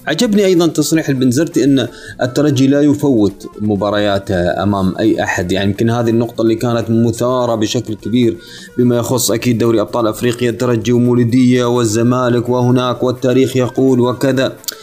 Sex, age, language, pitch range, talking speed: male, 20-39, Arabic, 115-145 Hz, 140 wpm